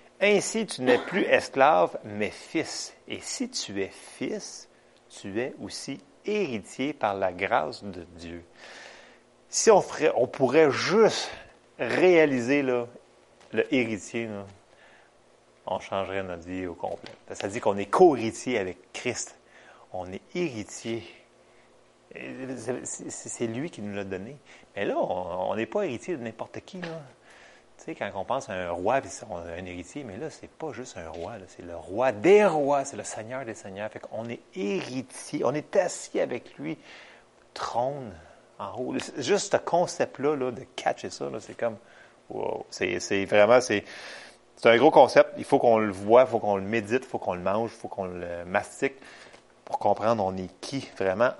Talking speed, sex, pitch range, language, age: 175 wpm, male, 95-135 Hz, French, 30-49